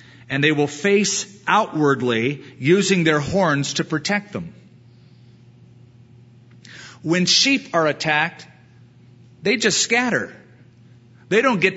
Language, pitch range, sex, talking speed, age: English, 125-185 Hz, male, 105 wpm, 40-59